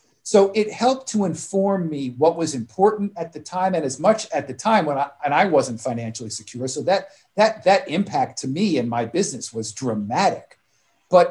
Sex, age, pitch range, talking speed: male, 50-69, 130-185 Hz, 200 wpm